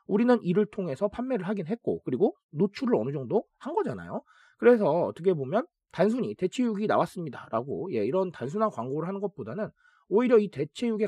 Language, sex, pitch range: Korean, male, 140-215 Hz